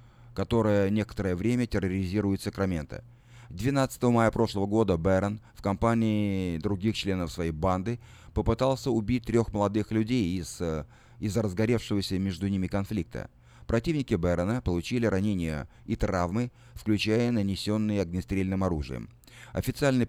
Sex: male